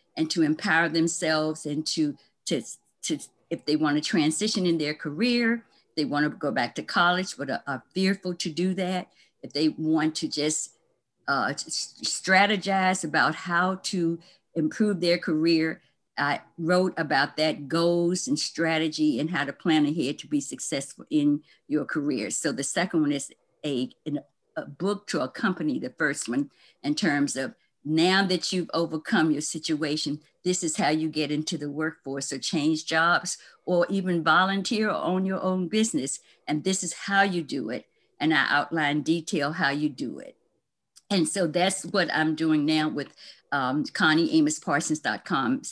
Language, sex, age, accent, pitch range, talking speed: English, female, 50-69, American, 155-185 Hz, 165 wpm